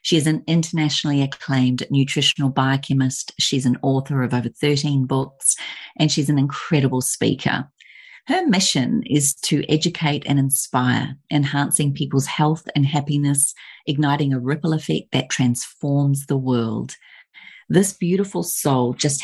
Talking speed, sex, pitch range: 135 wpm, female, 135-155 Hz